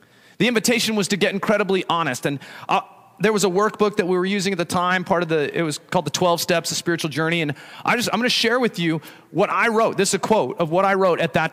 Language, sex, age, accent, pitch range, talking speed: English, male, 30-49, American, 160-200 Hz, 280 wpm